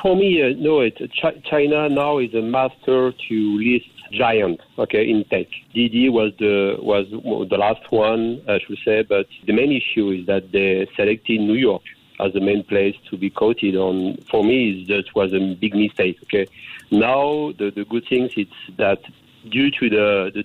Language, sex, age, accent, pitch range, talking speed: English, male, 50-69, French, 100-125 Hz, 185 wpm